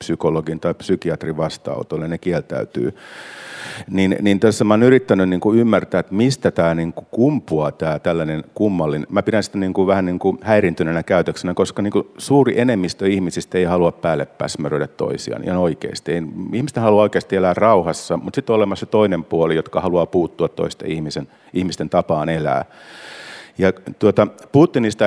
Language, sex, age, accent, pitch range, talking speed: Finnish, male, 50-69, native, 85-105 Hz, 155 wpm